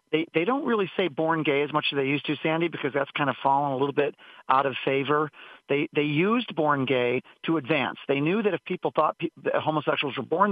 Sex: male